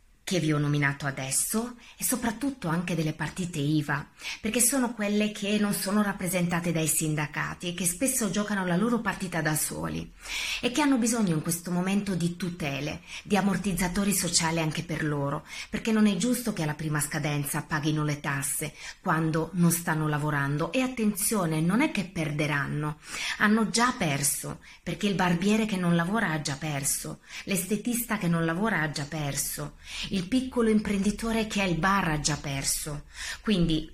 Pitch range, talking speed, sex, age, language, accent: 150-205 Hz, 165 wpm, female, 30-49, Italian, native